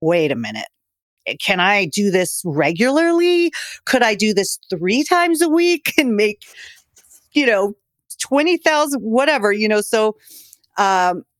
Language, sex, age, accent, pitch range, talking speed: English, female, 40-59, American, 160-200 Hz, 135 wpm